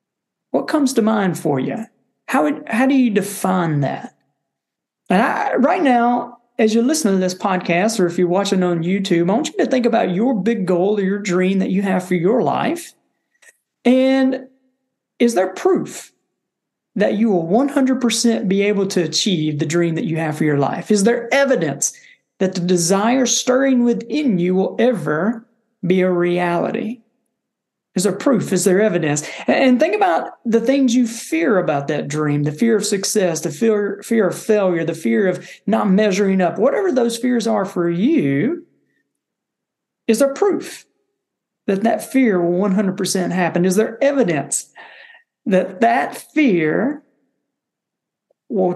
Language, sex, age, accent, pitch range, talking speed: English, male, 40-59, American, 185-250 Hz, 165 wpm